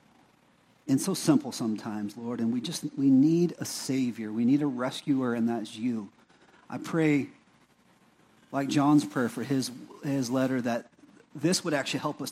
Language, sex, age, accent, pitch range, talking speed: English, male, 40-59, American, 160-225 Hz, 165 wpm